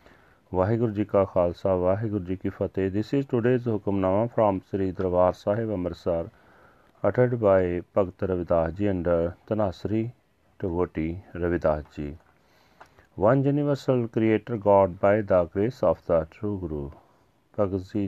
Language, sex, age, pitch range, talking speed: Punjabi, male, 40-59, 90-110 Hz, 130 wpm